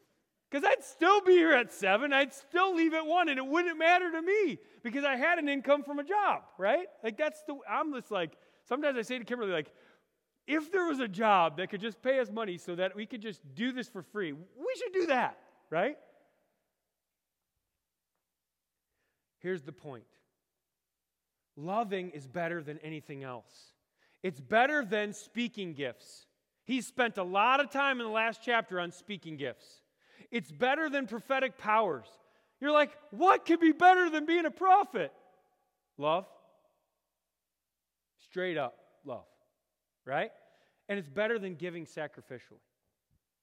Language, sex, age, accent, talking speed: English, male, 30-49, American, 160 wpm